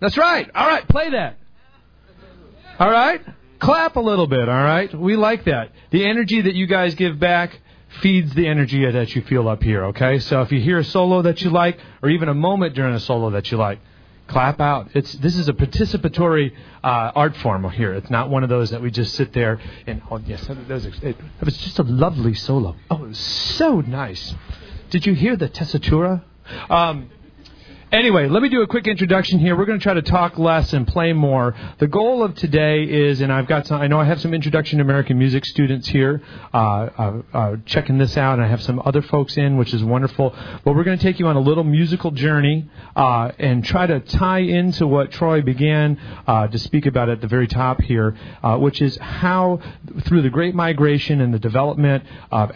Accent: American